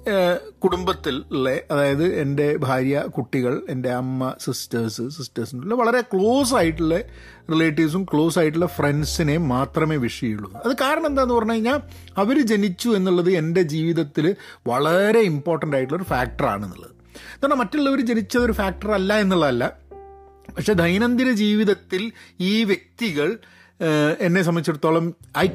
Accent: native